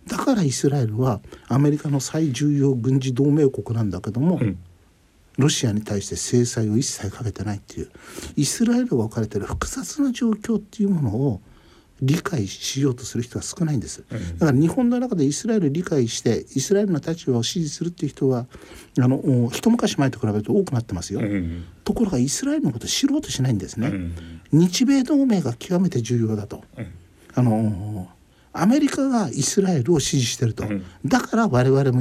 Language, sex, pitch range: Japanese, male, 105-165 Hz